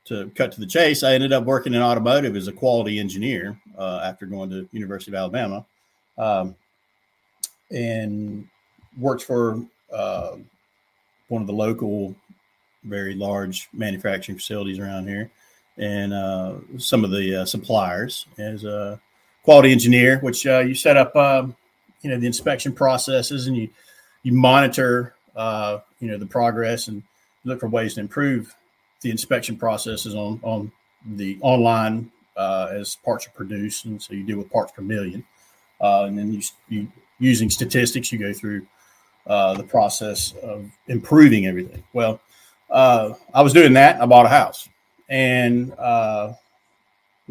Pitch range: 100-125 Hz